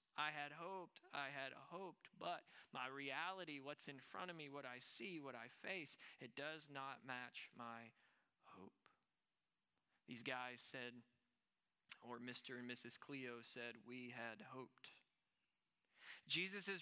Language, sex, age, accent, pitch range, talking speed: English, male, 20-39, American, 130-180 Hz, 140 wpm